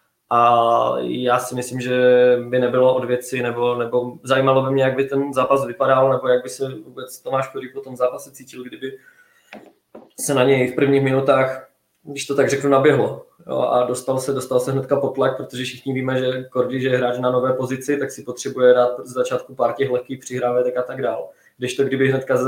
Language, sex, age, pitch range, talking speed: Czech, male, 20-39, 125-135 Hz, 210 wpm